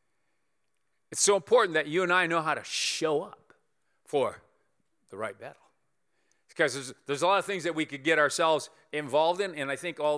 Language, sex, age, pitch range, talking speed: English, male, 40-59, 145-190 Hz, 200 wpm